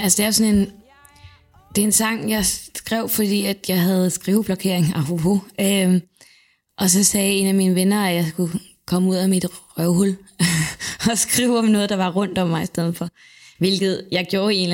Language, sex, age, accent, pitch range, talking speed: Danish, female, 20-39, native, 165-190 Hz, 215 wpm